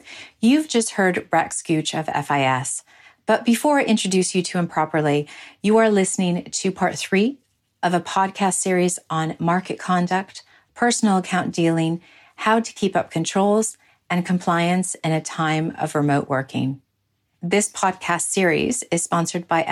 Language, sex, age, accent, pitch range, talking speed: English, female, 40-59, American, 160-200 Hz, 150 wpm